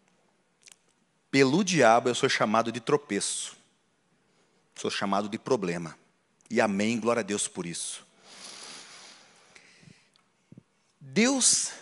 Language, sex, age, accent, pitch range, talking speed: Portuguese, male, 40-59, Brazilian, 140-195 Hz, 95 wpm